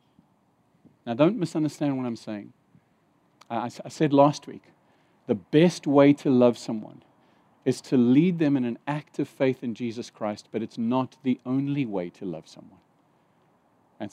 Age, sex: 50-69, male